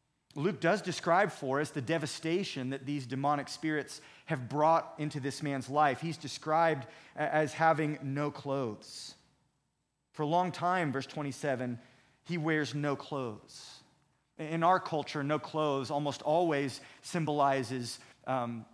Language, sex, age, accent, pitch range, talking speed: English, male, 40-59, American, 135-165 Hz, 135 wpm